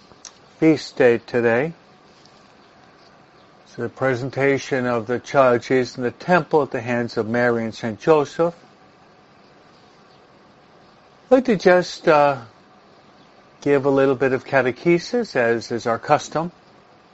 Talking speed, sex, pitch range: 125 wpm, male, 125-160 Hz